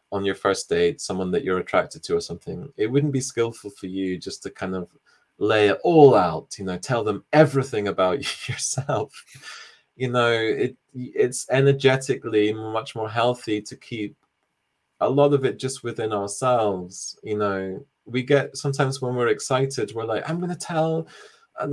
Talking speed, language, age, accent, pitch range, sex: 175 wpm, English, 20-39, British, 115-150 Hz, male